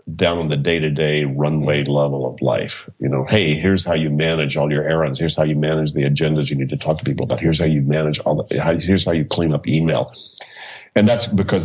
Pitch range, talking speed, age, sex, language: 75-90 Hz, 235 wpm, 50-69, male, English